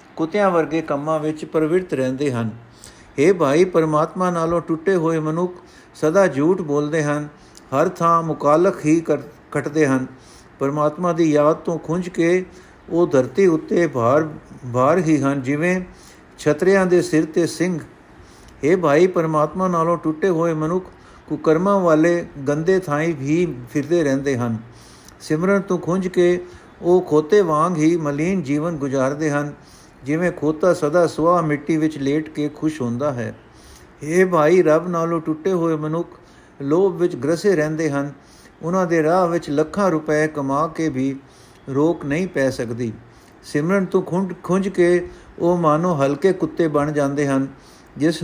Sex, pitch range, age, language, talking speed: male, 145-175 Hz, 50-69, Punjabi, 145 wpm